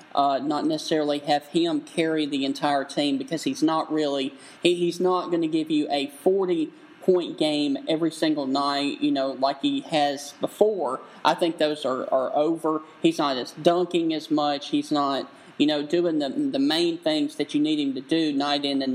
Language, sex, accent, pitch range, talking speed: English, male, American, 150-200 Hz, 210 wpm